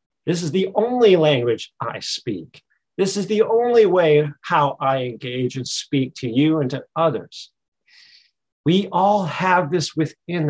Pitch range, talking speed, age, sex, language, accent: 145-190 Hz, 155 wpm, 50-69, male, English, American